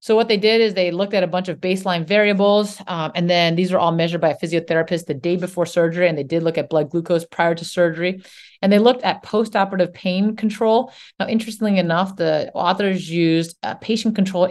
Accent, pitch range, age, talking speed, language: American, 160-195 Hz, 30-49, 215 wpm, English